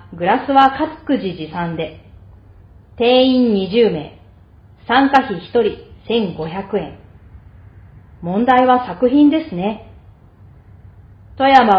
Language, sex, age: Japanese, female, 40-59